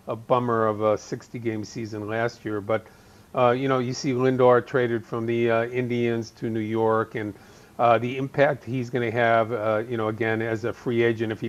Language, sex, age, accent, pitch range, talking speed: English, male, 40-59, American, 115-130 Hz, 215 wpm